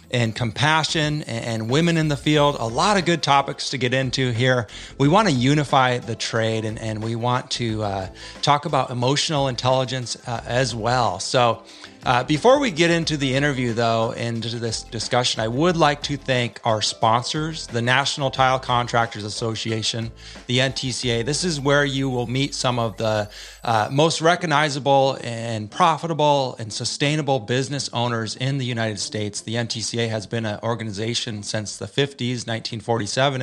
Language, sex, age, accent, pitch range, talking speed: English, male, 30-49, American, 115-140 Hz, 165 wpm